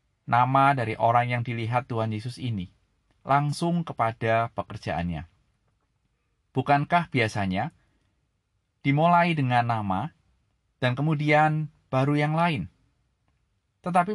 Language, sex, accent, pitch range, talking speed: Indonesian, male, native, 110-150 Hz, 95 wpm